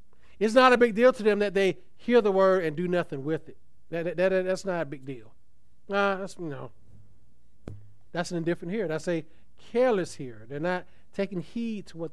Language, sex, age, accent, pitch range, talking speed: English, male, 40-59, American, 125-180 Hz, 210 wpm